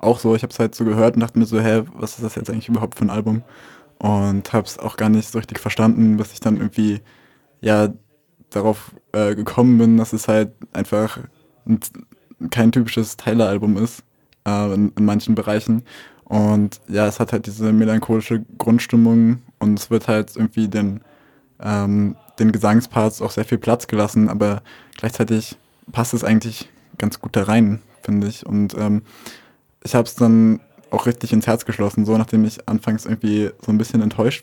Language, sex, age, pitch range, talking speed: German, male, 20-39, 105-115 Hz, 190 wpm